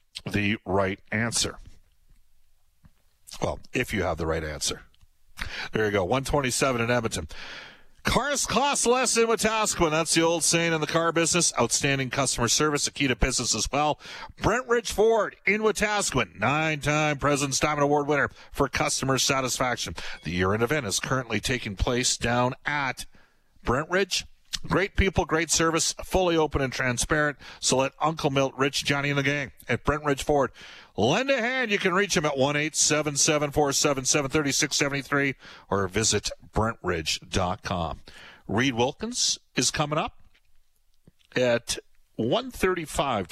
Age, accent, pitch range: 50-69, American, 115-160 Hz